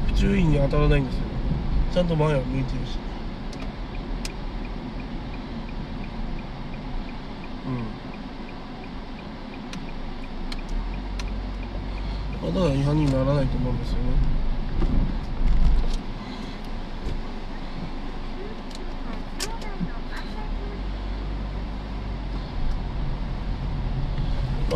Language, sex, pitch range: Japanese, male, 130-160 Hz